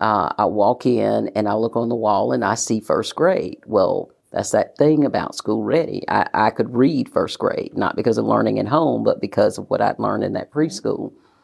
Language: English